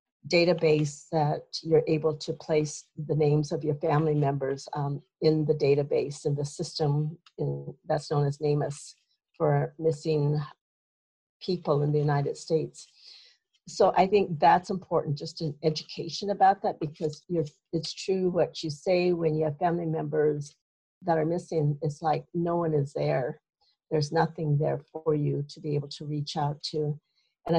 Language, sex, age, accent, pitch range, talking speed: English, female, 50-69, American, 150-165 Hz, 165 wpm